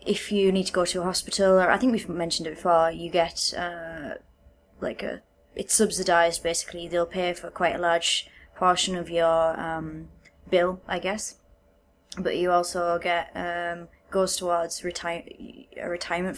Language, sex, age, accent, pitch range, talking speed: English, female, 20-39, British, 170-185 Hz, 170 wpm